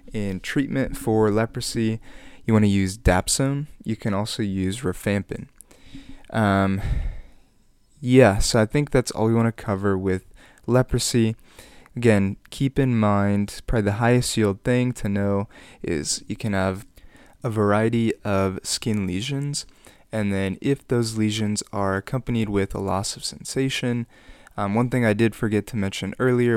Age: 20-39